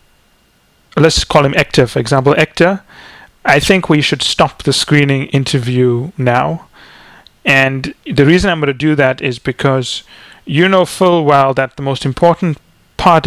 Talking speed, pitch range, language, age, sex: 160 wpm, 135-165 Hz, English, 30-49, male